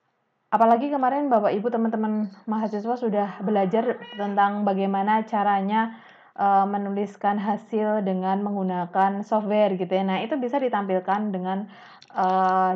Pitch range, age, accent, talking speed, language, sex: 185-225 Hz, 20-39, native, 120 wpm, Indonesian, female